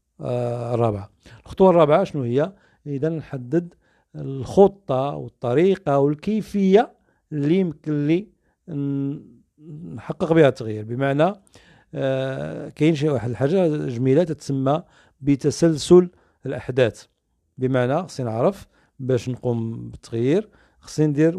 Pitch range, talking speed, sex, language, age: 120-150 Hz, 100 wpm, male, Arabic, 50-69